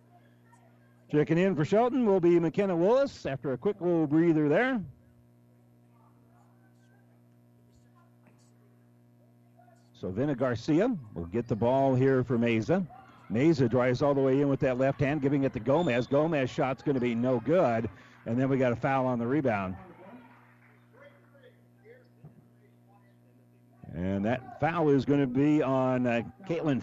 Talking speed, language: 145 wpm, English